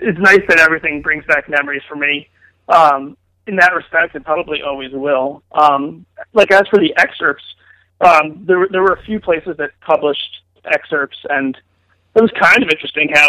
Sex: male